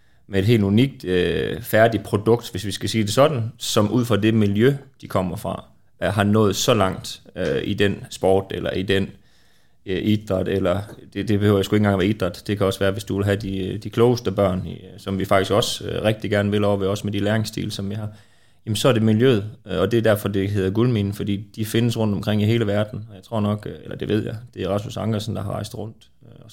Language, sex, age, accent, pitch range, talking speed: Danish, male, 30-49, native, 100-115 Hz, 235 wpm